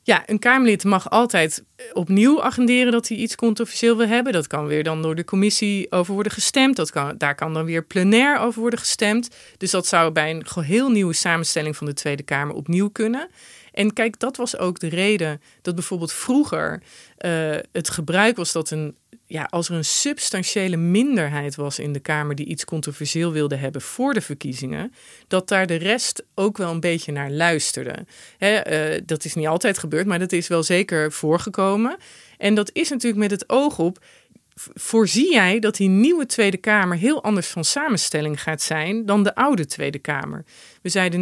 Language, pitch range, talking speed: Dutch, 155-220 Hz, 190 wpm